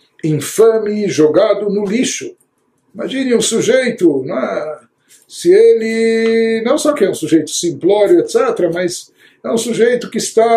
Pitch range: 160-240 Hz